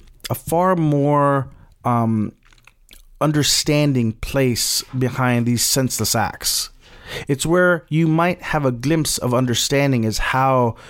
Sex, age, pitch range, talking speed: male, 30-49, 115-140 Hz, 115 wpm